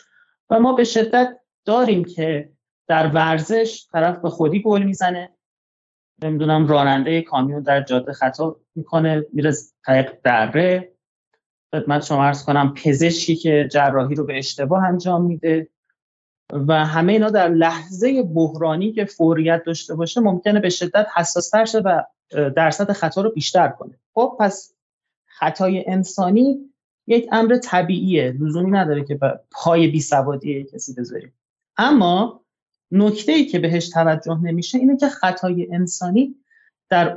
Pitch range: 150-210 Hz